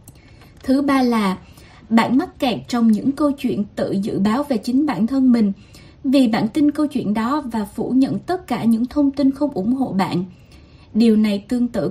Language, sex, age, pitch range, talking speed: Vietnamese, female, 20-39, 215-275 Hz, 200 wpm